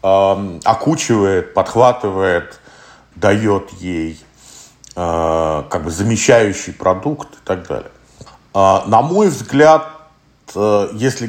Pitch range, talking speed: 90-120 Hz, 80 wpm